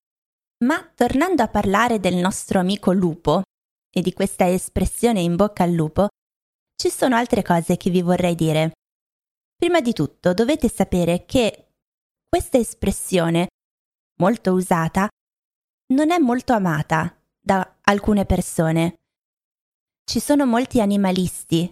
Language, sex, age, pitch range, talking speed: Italian, female, 20-39, 175-230 Hz, 125 wpm